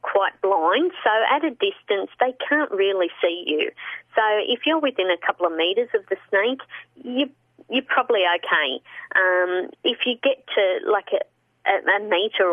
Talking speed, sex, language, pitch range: 175 wpm, female, English, 190-295 Hz